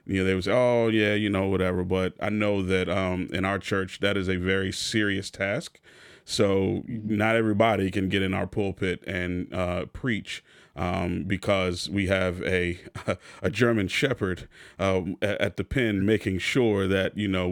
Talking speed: 180 wpm